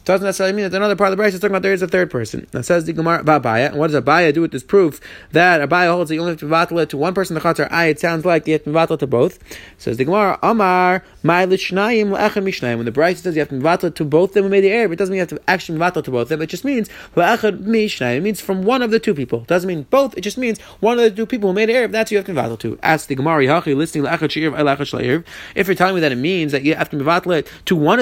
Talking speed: 315 wpm